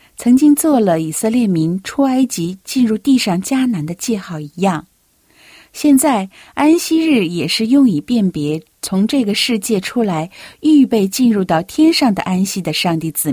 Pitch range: 160-240 Hz